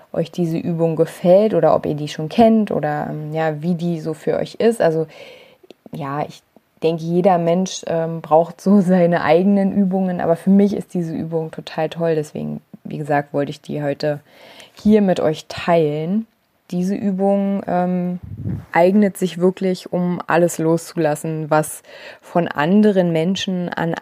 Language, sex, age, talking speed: German, female, 20-39, 155 wpm